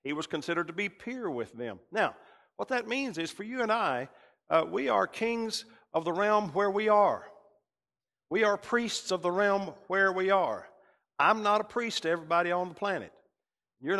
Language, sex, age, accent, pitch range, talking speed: English, male, 50-69, American, 155-210 Hz, 195 wpm